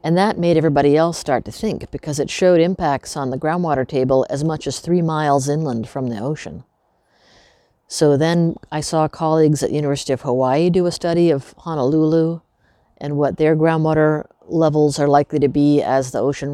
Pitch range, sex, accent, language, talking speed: 135-160 Hz, female, American, English, 190 wpm